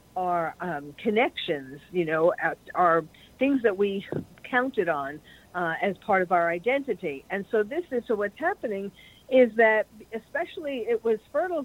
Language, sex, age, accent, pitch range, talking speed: English, female, 50-69, American, 190-255 Hz, 145 wpm